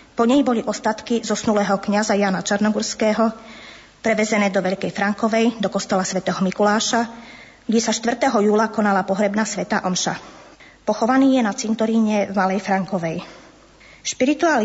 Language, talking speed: Slovak, 125 wpm